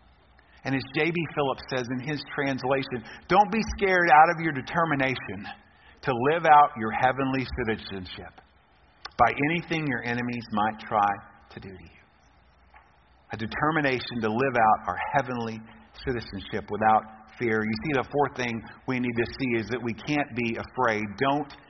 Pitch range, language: 110-145 Hz, English